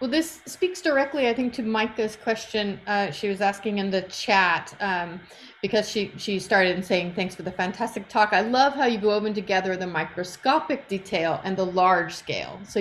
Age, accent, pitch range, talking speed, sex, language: 30-49, American, 185-230 Hz, 190 wpm, female, English